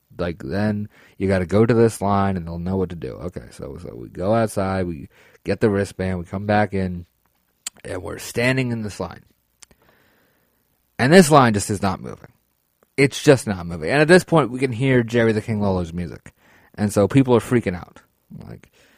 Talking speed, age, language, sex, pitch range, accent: 205 wpm, 30-49, English, male, 95-130 Hz, American